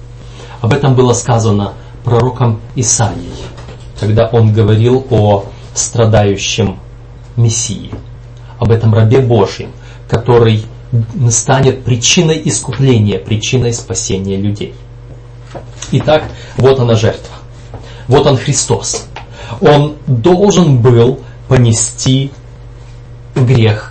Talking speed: 90 wpm